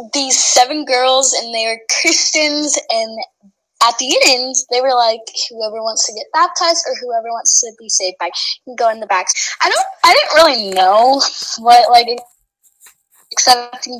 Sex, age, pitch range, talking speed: female, 10-29, 220-280 Hz, 175 wpm